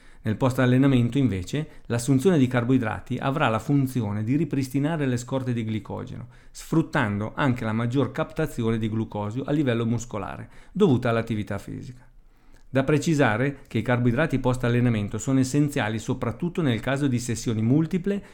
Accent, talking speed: native, 145 wpm